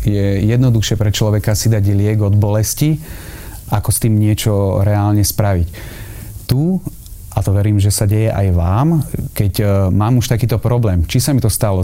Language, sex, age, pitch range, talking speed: Slovak, male, 30-49, 95-115 Hz, 175 wpm